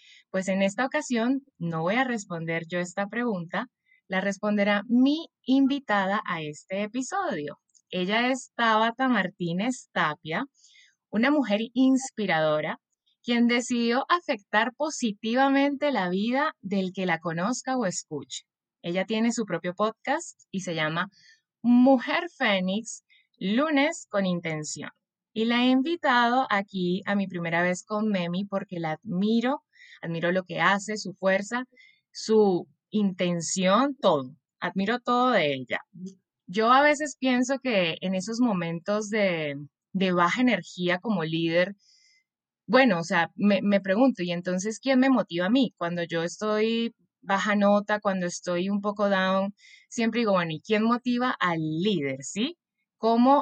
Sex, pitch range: female, 180-250 Hz